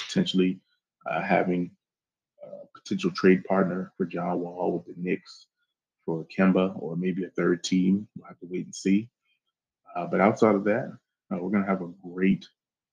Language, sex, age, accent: English, male, 20-39, American